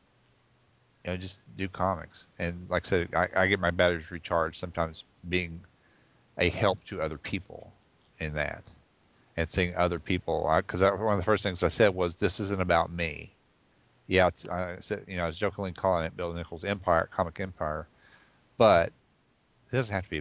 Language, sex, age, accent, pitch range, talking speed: English, male, 40-59, American, 80-95 Hz, 195 wpm